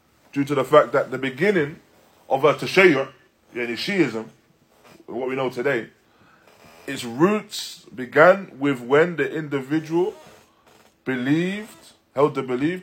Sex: male